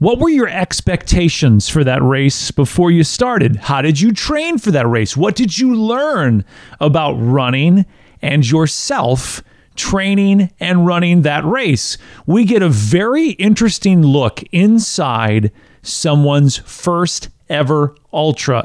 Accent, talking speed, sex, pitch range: American, 130 wpm, male, 130-180 Hz